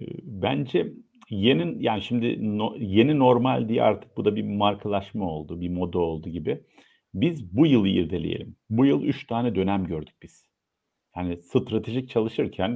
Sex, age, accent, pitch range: male, 50-69, native, 105-145 Hz